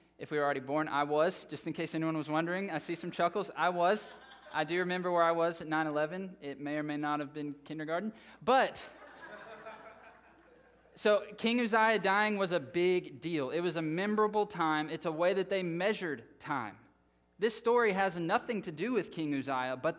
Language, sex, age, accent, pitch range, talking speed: English, male, 20-39, American, 150-195 Hz, 200 wpm